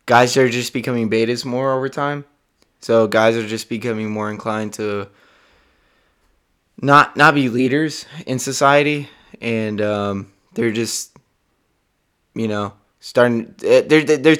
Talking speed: 130 wpm